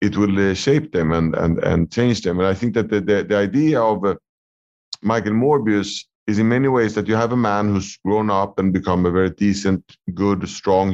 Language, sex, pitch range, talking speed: English, male, 95-110 Hz, 225 wpm